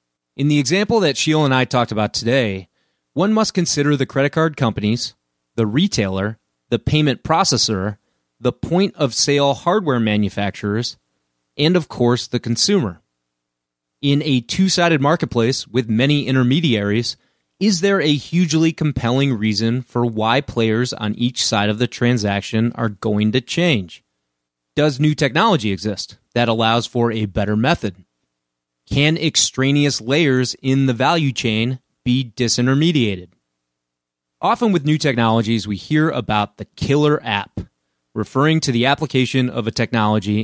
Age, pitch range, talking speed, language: 30-49, 105-140 Hz, 140 wpm, English